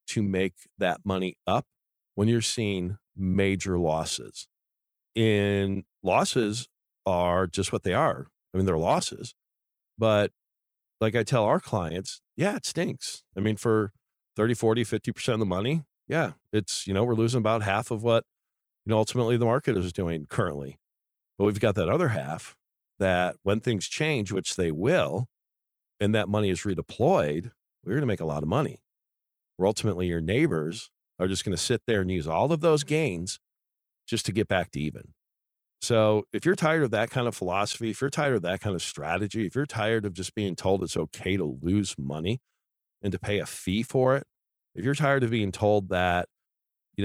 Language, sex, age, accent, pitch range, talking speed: English, male, 40-59, American, 90-115 Hz, 190 wpm